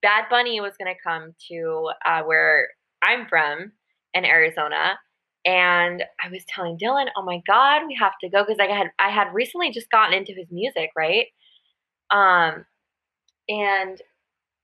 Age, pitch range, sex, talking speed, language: 20-39, 170-240 Hz, female, 160 wpm, English